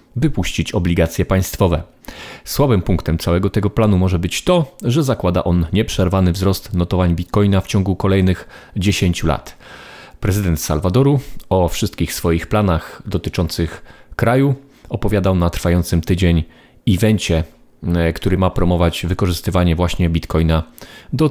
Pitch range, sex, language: 85-120 Hz, male, Polish